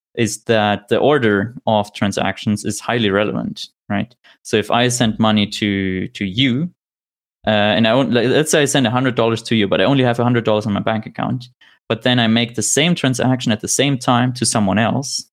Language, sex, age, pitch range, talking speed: English, male, 20-39, 105-125 Hz, 220 wpm